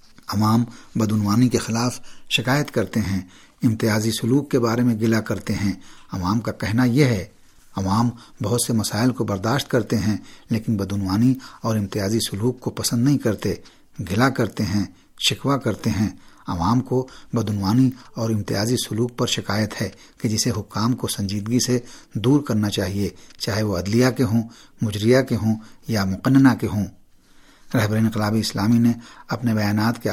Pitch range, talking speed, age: 105-125 Hz, 155 wpm, 60-79